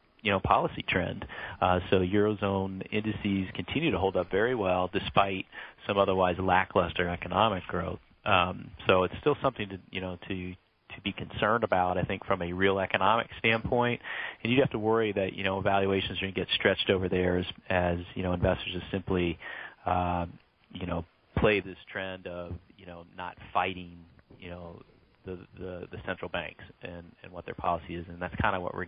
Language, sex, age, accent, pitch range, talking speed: English, male, 30-49, American, 90-100 Hz, 195 wpm